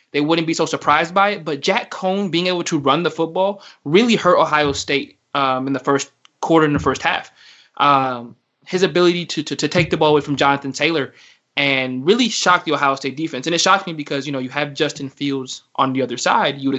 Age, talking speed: 20-39, 235 wpm